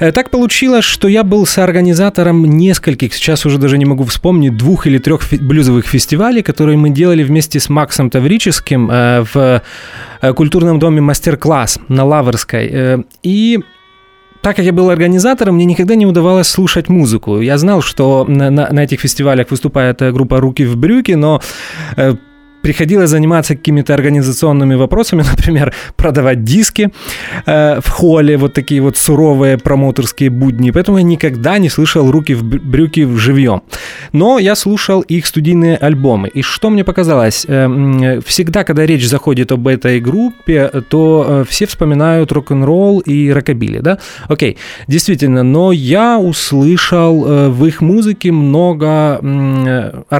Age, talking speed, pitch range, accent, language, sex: 20-39, 150 wpm, 135-175 Hz, native, Russian, male